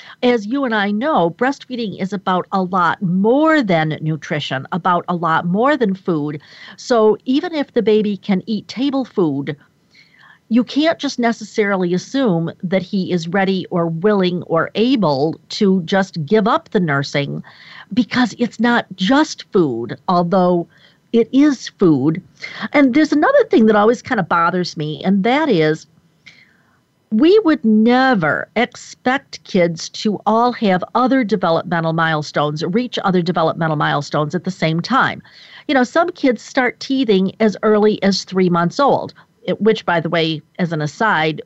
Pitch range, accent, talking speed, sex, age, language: 170-240 Hz, American, 155 wpm, female, 50-69, English